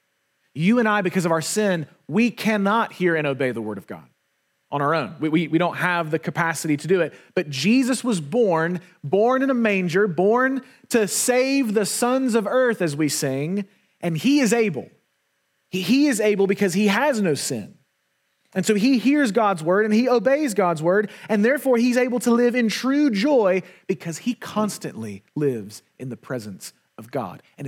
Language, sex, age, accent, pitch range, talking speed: English, male, 30-49, American, 155-220 Hz, 195 wpm